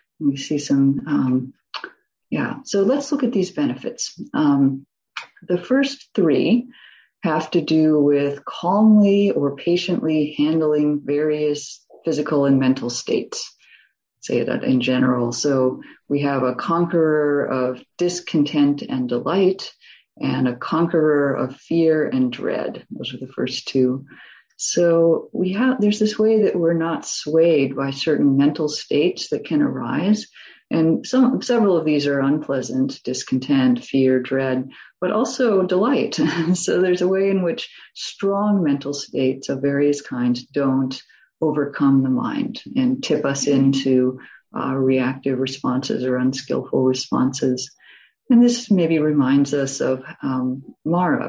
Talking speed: 135 wpm